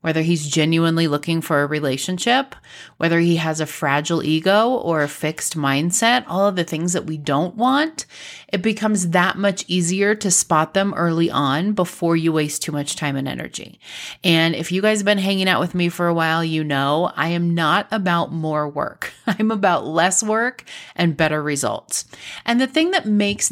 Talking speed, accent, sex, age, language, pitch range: 195 wpm, American, female, 30-49, English, 160-205 Hz